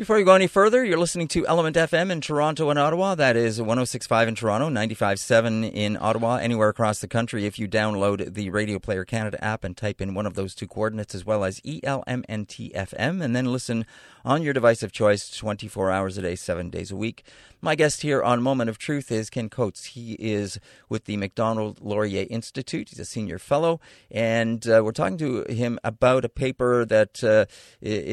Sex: male